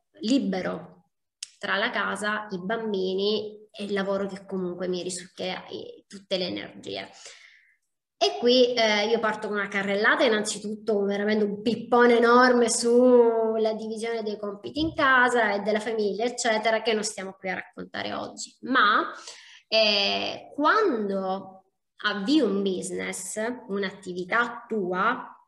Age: 20-39